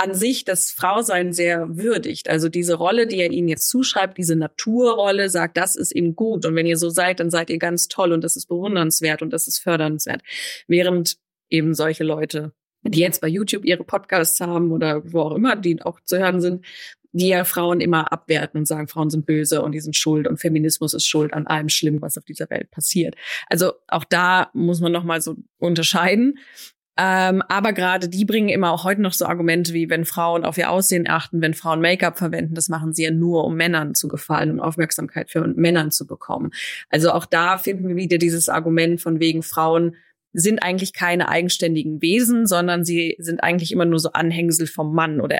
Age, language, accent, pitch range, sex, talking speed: 30-49, German, German, 160-180 Hz, female, 210 wpm